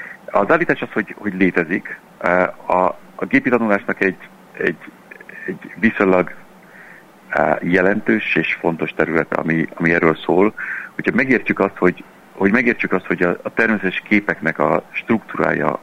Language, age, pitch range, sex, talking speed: Hungarian, 60-79, 80-105 Hz, male, 135 wpm